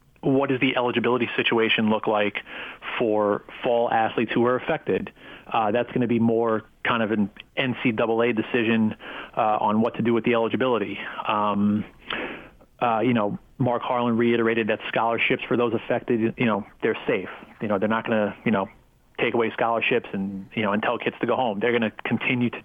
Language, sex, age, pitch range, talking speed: English, male, 30-49, 110-125 Hz, 195 wpm